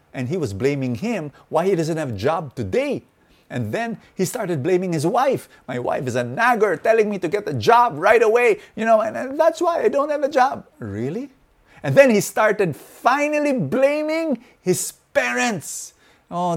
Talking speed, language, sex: 190 wpm, English, male